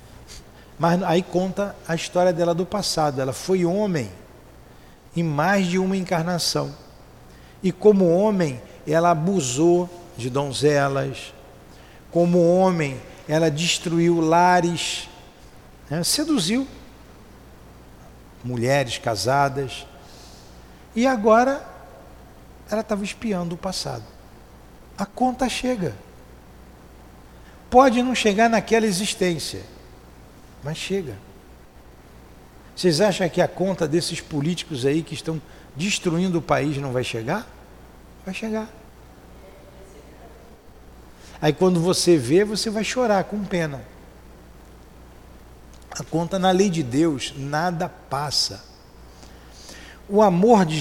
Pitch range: 115-185 Hz